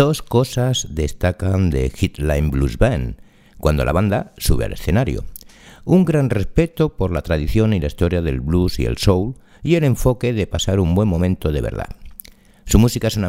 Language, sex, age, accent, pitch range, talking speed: Spanish, male, 60-79, Spanish, 80-115 Hz, 185 wpm